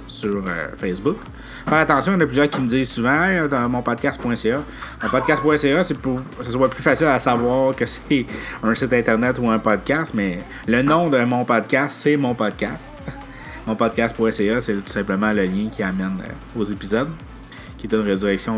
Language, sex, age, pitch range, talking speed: French, male, 30-49, 110-130 Hz, 195 wpm